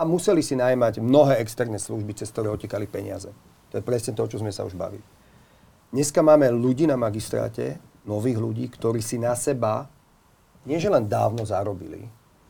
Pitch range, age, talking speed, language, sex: 115-145 Hz, 40-59, 160 wpm, Slovak, male